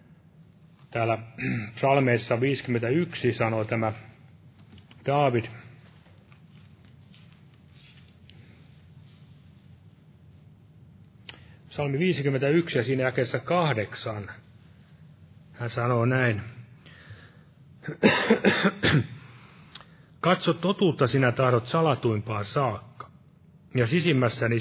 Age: 30-49